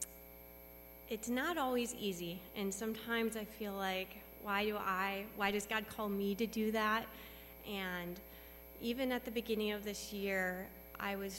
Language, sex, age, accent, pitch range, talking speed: English, female, 30-49, American, 195-225 Hz, 160 wpm